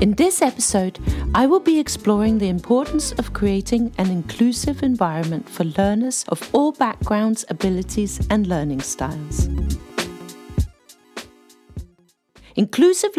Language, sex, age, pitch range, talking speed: English, female, 40-59, 175-250 Hz, 110 wpm